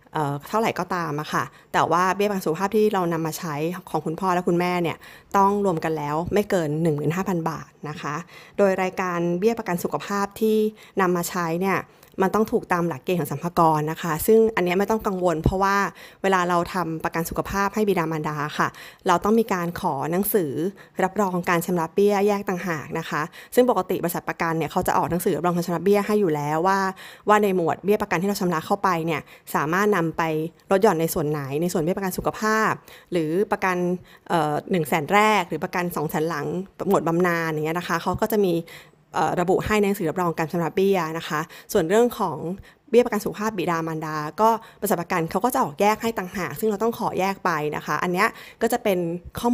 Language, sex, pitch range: Thai, female, 165-205 Hz